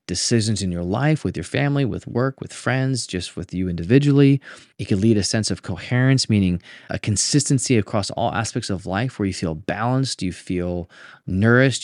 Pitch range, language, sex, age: 100-140 Hz, English, male, 20-39